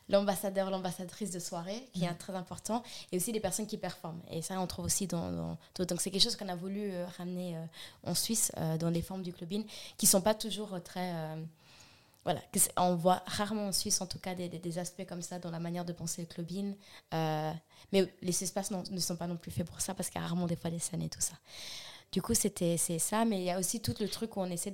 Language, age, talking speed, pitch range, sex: French, 20-39, 270 wpm, 170-200 Hz, female